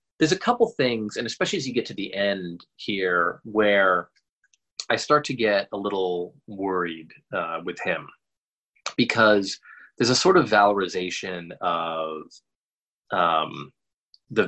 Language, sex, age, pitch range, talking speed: English, male, 30-49, 100-150 Hz, 135 wpm